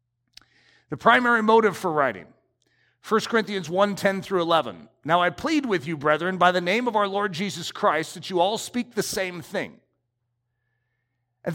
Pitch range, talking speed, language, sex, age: 160-230 Hz, 170 wpm, English, male, 50-69